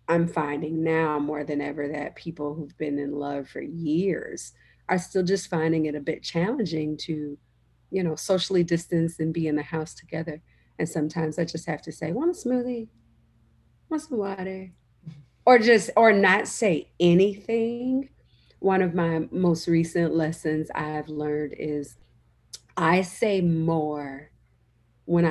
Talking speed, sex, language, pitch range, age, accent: 155 wpm, female, English, 150-190 Hz, 40-59, American